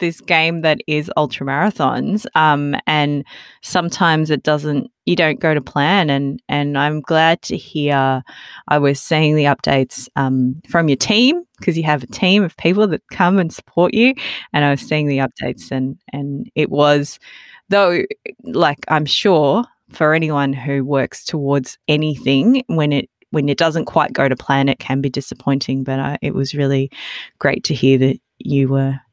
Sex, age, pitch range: female, 20-39, 140-190 Hz